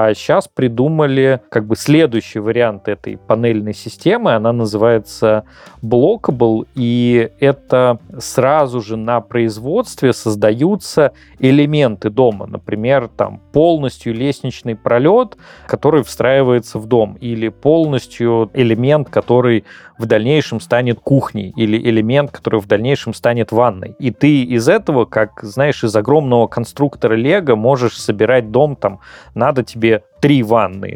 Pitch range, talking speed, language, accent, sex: 110-130 Hz, 125 wpm, Russian, native, male